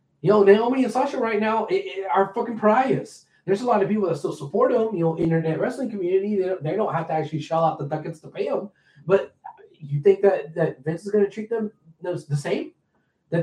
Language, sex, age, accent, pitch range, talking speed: English, male, 20-39, American, 175-255 Hz, 235 wpm